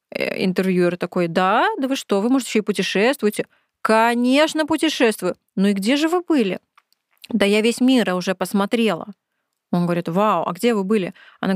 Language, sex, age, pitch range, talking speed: Russian, female, 20-39, 195-245 Hz, 165 wpm